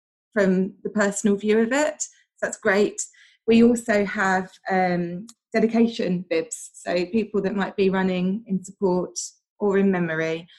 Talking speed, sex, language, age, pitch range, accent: 145 wpm, female, English, 20-39, 185-225 Hz, British